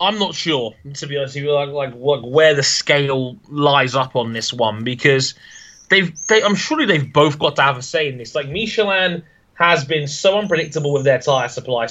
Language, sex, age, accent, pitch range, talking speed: English, male, 20-39, British, 130-150 Hz, 210 wpm